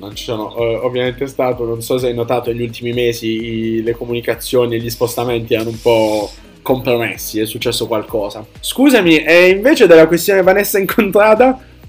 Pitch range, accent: 115-165 Hz, native